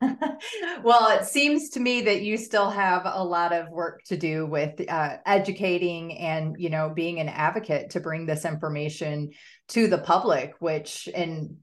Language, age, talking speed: English, 30-49, 170 wpm